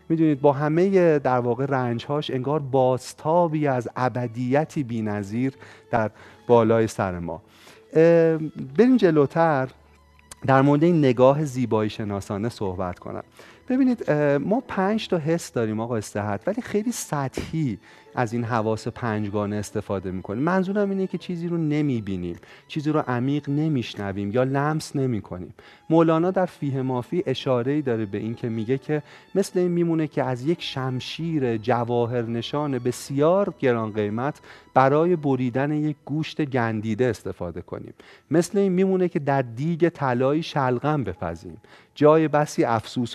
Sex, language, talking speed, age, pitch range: male, Persian, 135 wpm, 40-59, 115-155 Hz